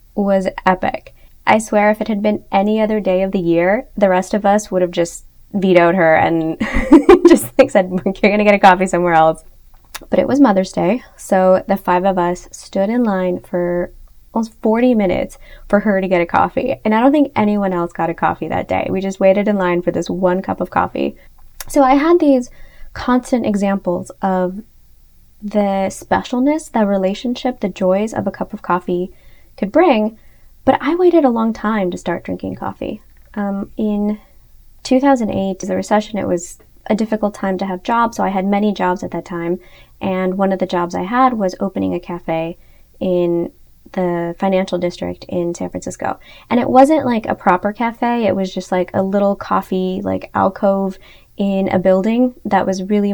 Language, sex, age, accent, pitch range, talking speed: English, female, 20-39, American, 180-215 Hz, 190 wpm